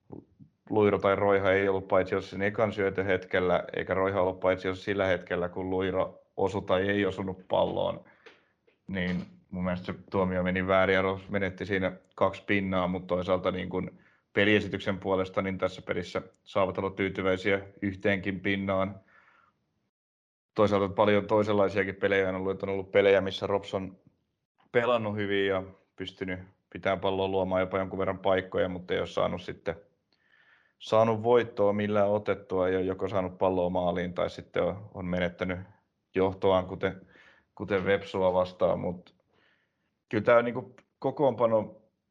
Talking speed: 140 wpm